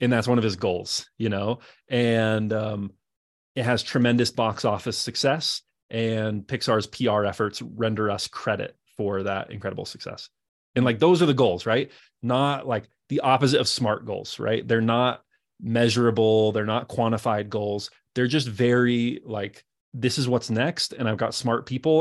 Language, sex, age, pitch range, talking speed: English, male, 20-39, 105-125 Hz, 170 wpm